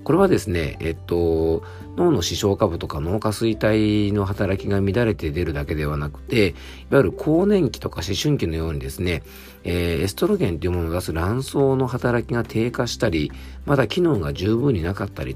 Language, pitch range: Japanese, 80-115 Hz